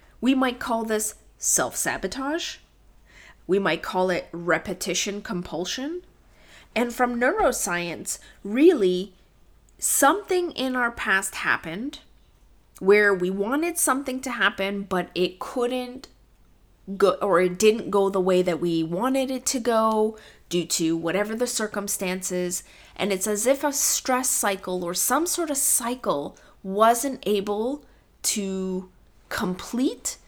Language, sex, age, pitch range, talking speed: English, female, 30-49, 180-240 Hz, 125 wpm